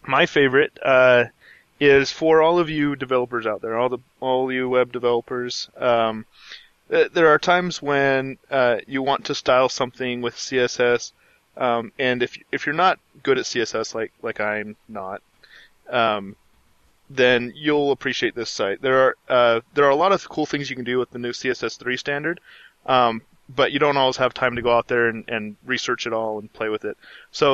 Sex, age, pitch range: male, 20-39, 115-135 Hz